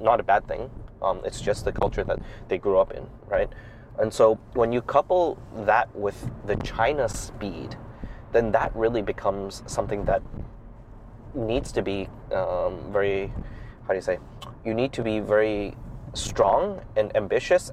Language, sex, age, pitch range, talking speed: English, male, 20-39, 105-125 Hz, 165 wpm